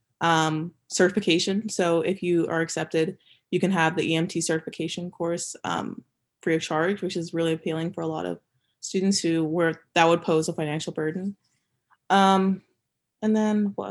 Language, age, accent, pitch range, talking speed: English, 20-39, American, 165-195 Hz, 170 wpm